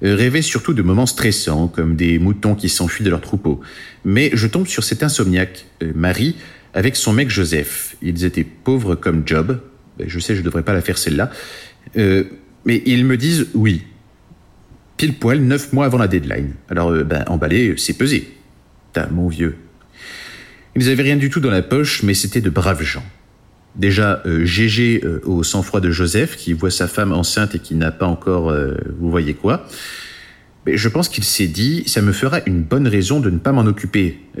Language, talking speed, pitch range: French, 200 wpm, 90-125 Hz